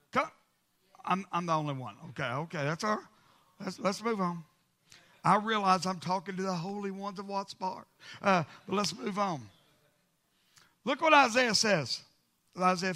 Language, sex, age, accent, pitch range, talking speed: English, male, 50-69, American, 175-250 Hz, 155 wpm